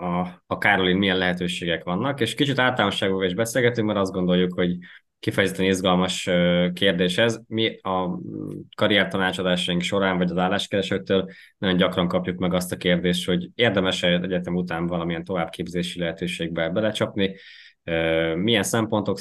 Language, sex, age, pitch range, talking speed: Hungarian, male, 20-39, 90-100 Hz, 135 wpm